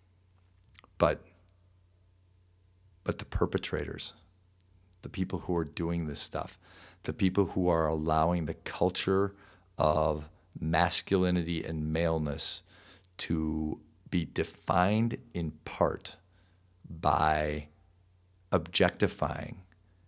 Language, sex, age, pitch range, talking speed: English, male, 50-69, 85-95 Hz, 85 wpm